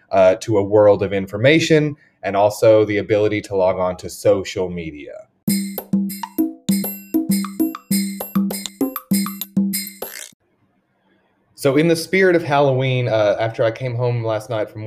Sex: male